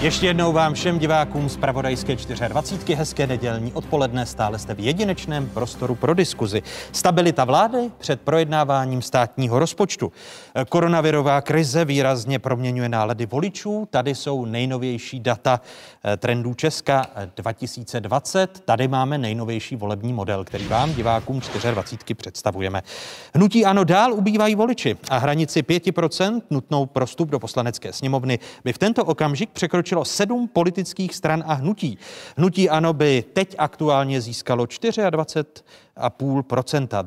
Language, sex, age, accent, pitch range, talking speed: Czech, male, 30-49, native, 125-165 Hz, 125 wpm